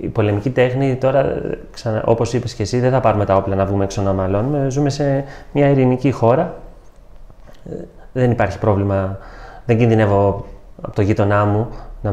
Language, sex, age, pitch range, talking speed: Greek, male, 30-49, 110-145 Hz, 170 wpm